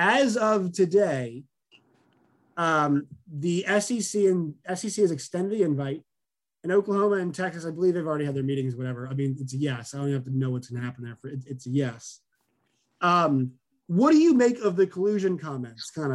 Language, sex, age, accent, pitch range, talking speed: English, male, 20-39, American, 140-200 Hz, 210 wpm